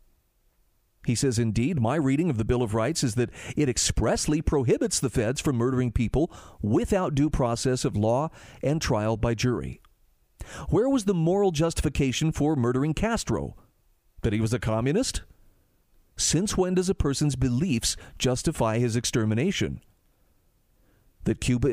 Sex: male